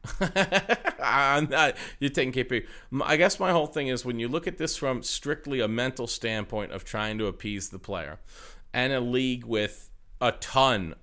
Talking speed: 180 wpm